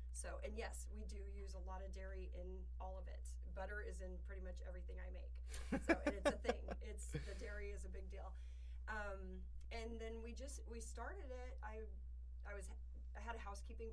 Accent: American